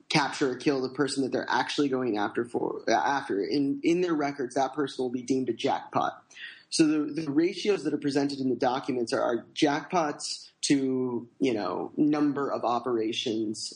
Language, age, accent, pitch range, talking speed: English, 20-39, American, 135-175 Hz, 185 wpm